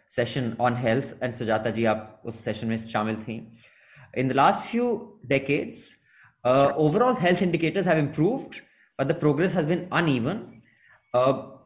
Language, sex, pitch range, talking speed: English, male, 130-185 Hz, 150 wpm